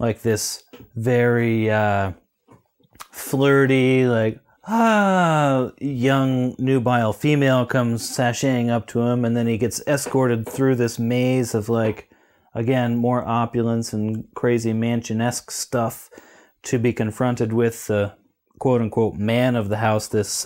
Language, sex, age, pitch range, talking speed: English, male, 30-49, 110-125 Hz, 125 wpm